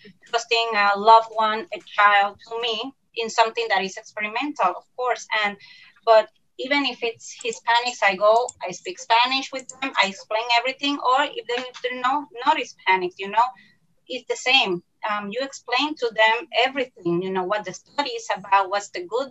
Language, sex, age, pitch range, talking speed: English, female, 30-49, 205-260 Hz, 180 wpm